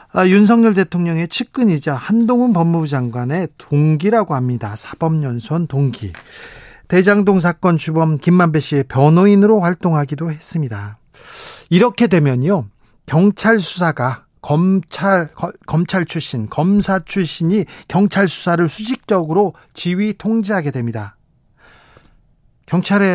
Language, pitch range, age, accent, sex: Korean, 145-200 Hz, 40-59, native, male